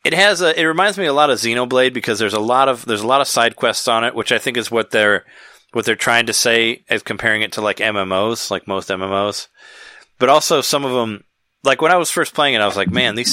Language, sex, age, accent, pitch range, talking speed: English, male, 30-49, American, 100-130 Hz, 270 wpm